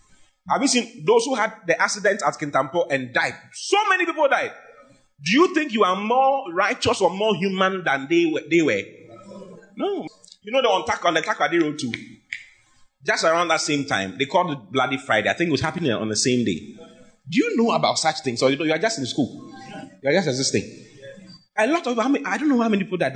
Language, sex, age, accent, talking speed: English, male, 30-49, Nigerian, 240 wpm